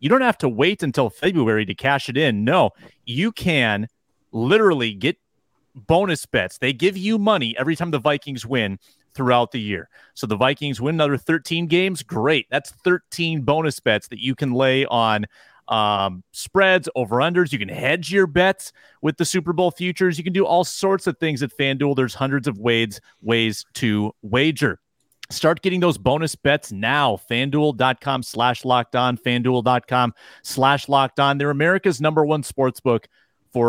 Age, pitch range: 30-49, 115-155 Hz